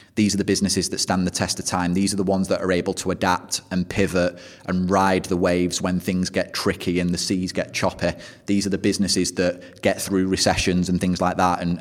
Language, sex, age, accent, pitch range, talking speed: English, male, 30-49, British, 90-95 Hz, 240 wpm